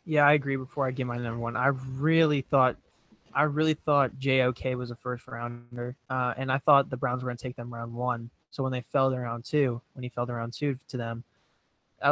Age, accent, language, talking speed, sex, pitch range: 20-39, American, English, 240 wpm, male, 125-140 Hz